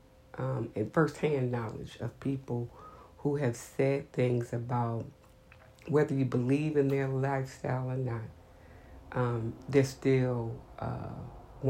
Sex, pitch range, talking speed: female, 120-135 Hz, 120 wpm